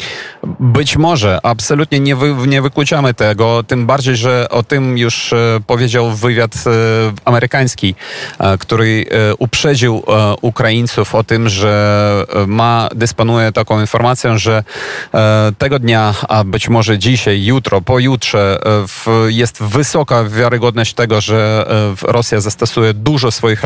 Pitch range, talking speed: 110-125 Hz, 135 wpm